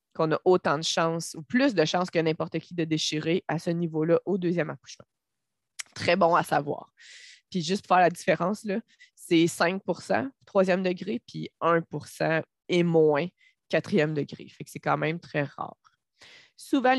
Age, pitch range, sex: 20-39, 155-185 Hz, female